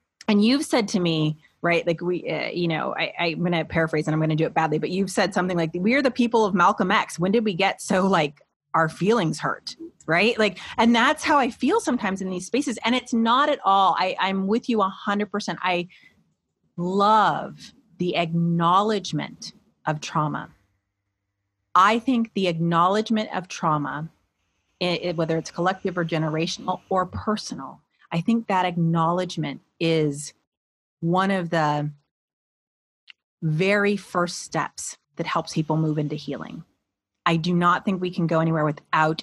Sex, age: female, 30-49